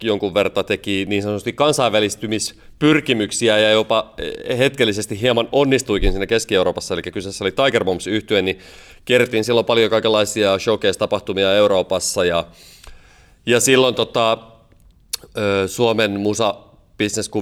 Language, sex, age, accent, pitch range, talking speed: Finnish, male, 30-49, native, 95-115 Hz, 100 wpm